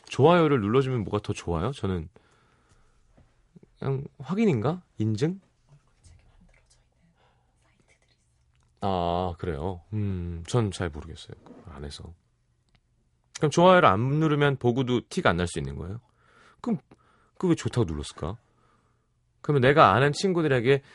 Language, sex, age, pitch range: Korean, male, 30-49, 90-135 Hz